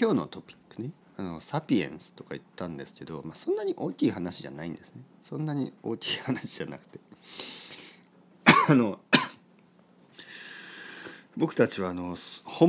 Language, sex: Japanese, male